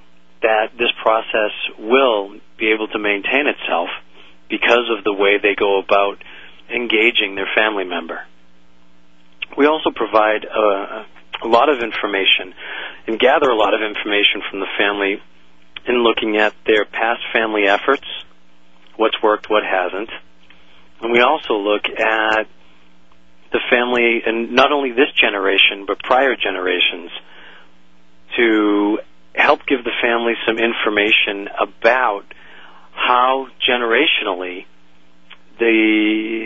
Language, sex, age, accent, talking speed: English, male, 40-59, American, 120 wpm